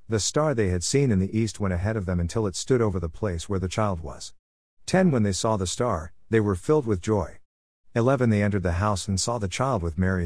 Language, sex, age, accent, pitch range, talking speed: English, male, 50-69, American, 85-115 Hz, 255 wpm